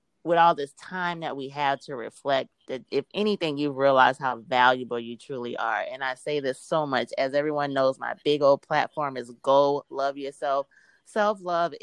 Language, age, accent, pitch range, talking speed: English, 30-49, American, 135-170 Hz, 190 wpm